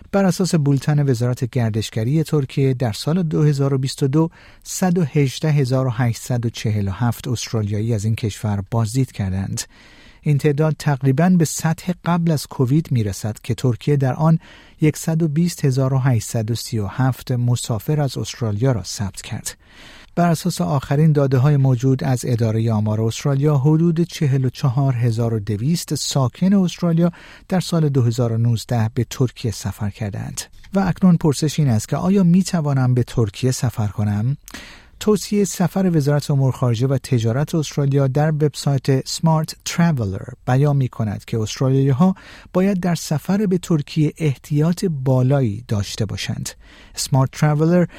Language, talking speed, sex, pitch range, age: Persian, 130 wpm, male, 120-160 Hz, 50-69